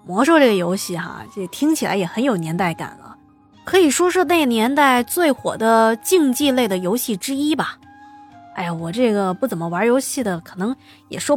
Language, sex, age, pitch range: Chinese, female, 20-39, 195-290 Hz